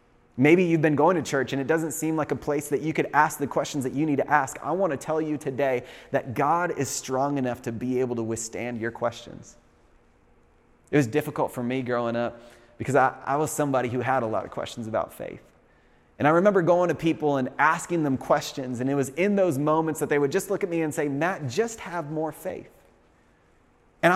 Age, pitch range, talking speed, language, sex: 30-49, 140-170 Hz, 230 wpm, English, male